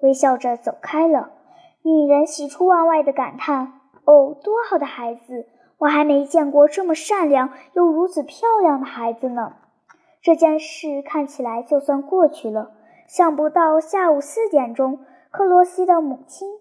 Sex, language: male, Chinese